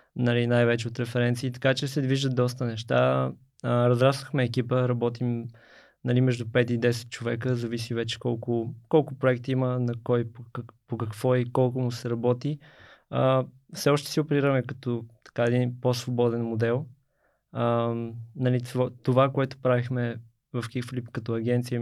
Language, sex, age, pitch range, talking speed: Bulgarian, male, 20-39, 120-130 Hz, 150 wpm